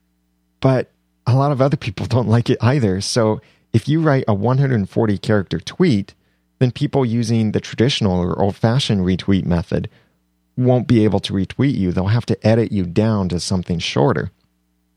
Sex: male